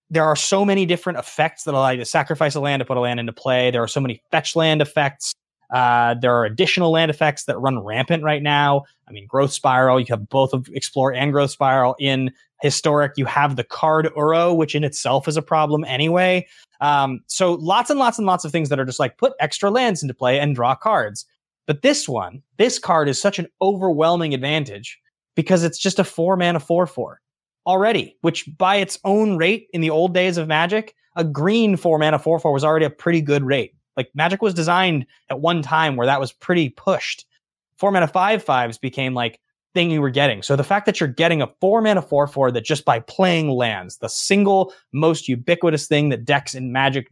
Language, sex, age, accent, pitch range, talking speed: English, male, 20-39, American, 135-175 Hz, 220 wpm